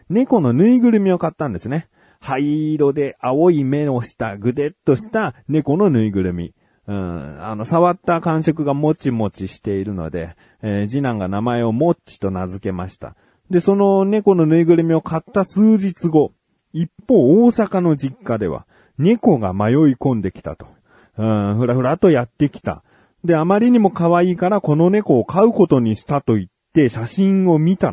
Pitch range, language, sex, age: 110-170 Hz, Japanese, male, 30-49